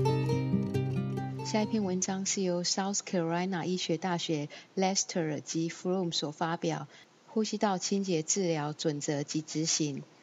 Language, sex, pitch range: Chinese, female, 165-195 Hz